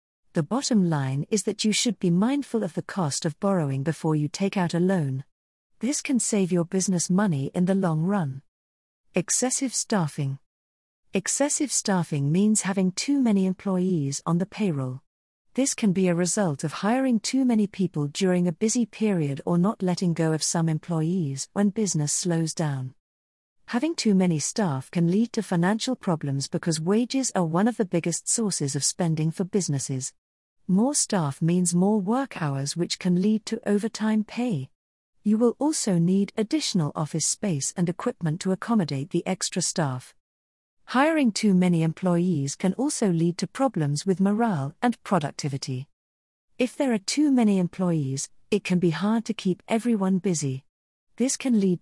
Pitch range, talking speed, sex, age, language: 155-215 Hz, 165 wpm, female, 50-69, English